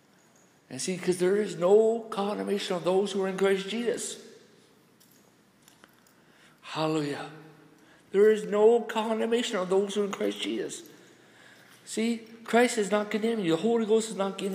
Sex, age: male, 60-79